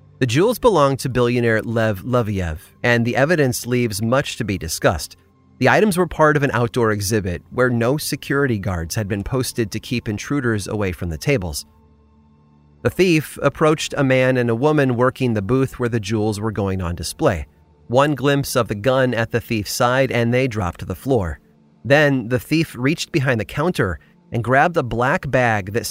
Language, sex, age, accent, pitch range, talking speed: English, male, 30-49, American, 100-140 Hz, 190 wpm